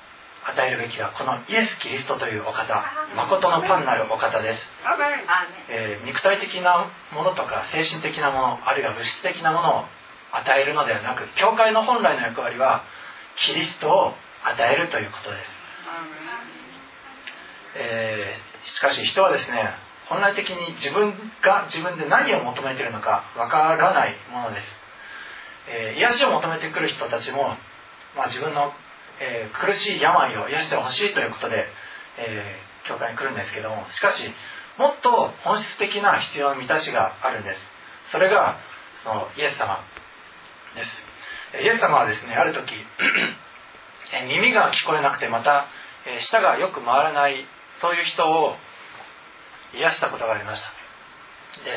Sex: male